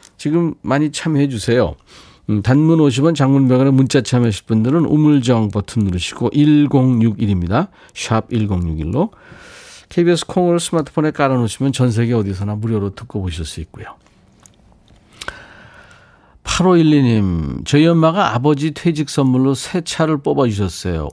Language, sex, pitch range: Korean, male, 105-145 Hz